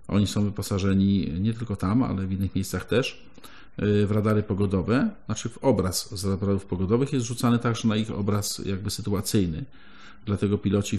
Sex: male